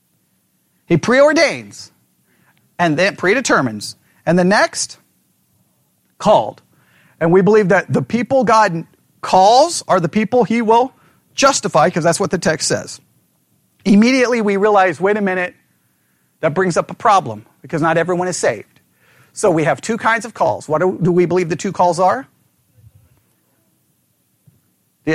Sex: male